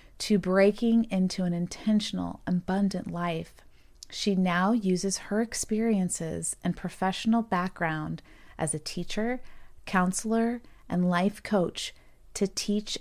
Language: English